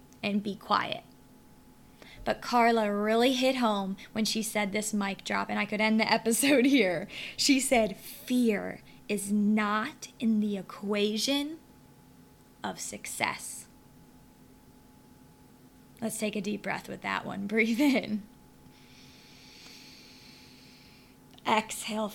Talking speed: 115 wpm